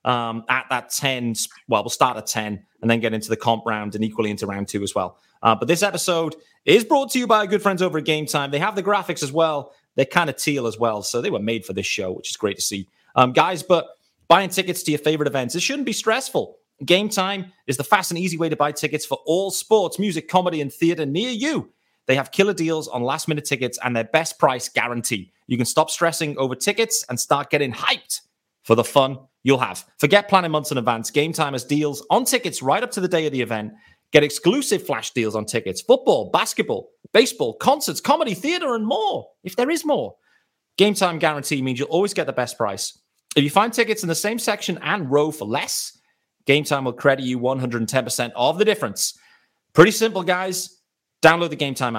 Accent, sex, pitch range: British, male, 130-185 Hz